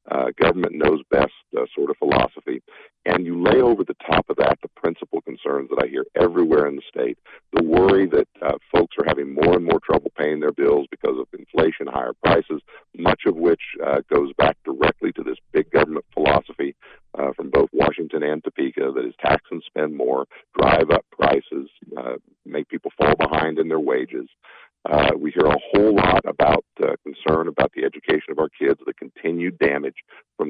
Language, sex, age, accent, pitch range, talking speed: English, male, 50-69, American, 365-430 Hz, 190 wpm